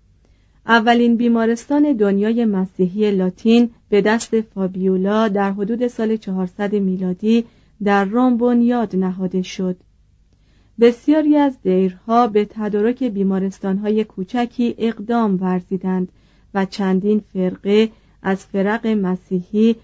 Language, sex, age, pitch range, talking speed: Persian, female, 40-59, 190-230 Hz, 95 wpm